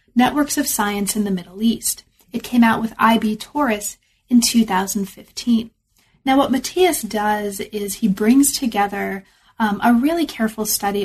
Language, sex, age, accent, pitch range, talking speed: English, female, 30-49, American, 205-240 Hz, 150 wpm